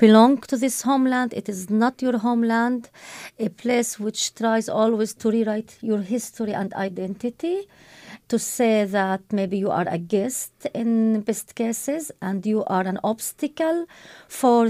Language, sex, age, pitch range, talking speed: English, female, 30-49, 195-245 Hz, 150 wpm